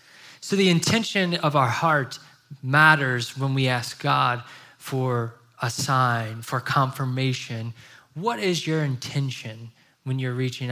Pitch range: 125-150 Hz